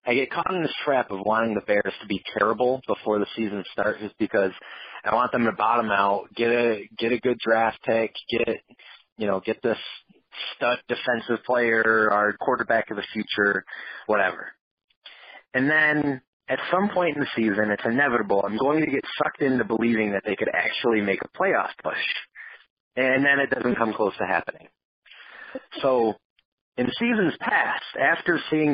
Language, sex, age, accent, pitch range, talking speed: English, male, 30-49, American, 105-130 Hz, 175 wpm